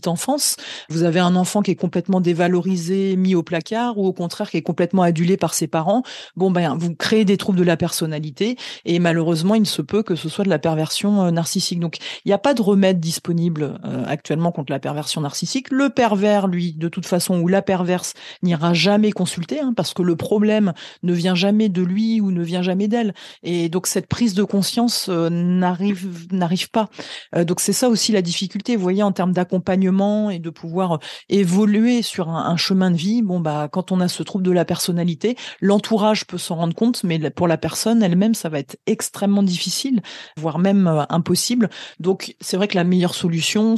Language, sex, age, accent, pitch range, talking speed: French, female, 40-59, French, 170-200 Hz, 205 wpm